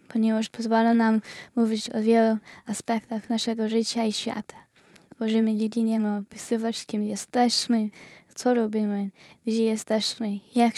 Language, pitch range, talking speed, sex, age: Polish, 215-230 Hz, 115 wpm, female, 10-29